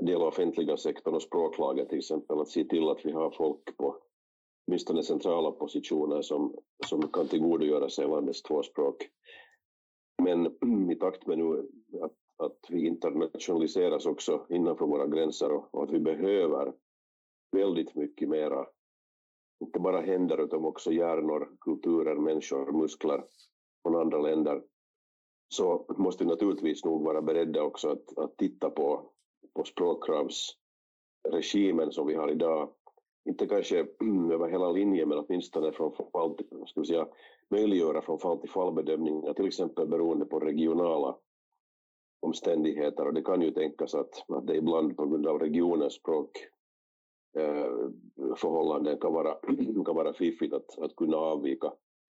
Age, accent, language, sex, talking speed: 50-69, Finnish, Swedish, male, 145 wpm